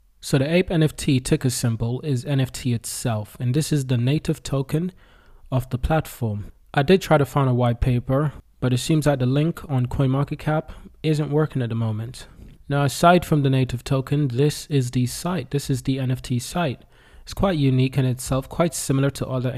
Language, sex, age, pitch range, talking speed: English, male, 20-39, 125-145 Hz, 195 wpm